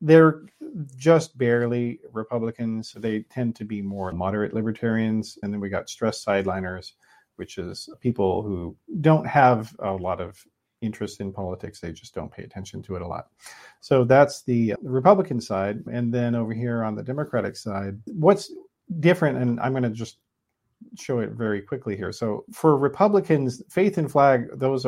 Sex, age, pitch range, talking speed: male, 40-59, 95-135 Hz, 170 wpm